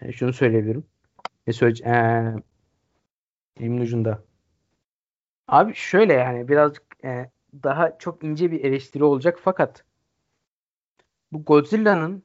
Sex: male